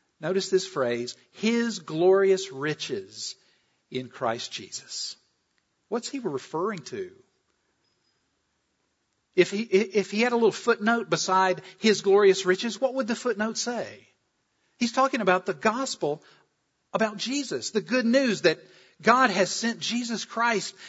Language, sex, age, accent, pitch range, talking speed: English, male, 50-69, American, 175-230 Hz, 130 wpm